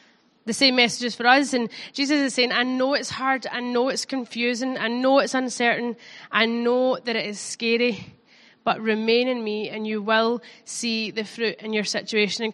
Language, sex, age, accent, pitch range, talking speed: English, female, 20-39, British, 220-255 Hz, 195 wpm